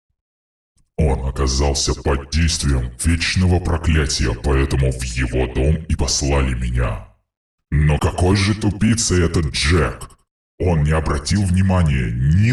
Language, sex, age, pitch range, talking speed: Russian, female, 20-39, 70-85 Hz, 115 wpm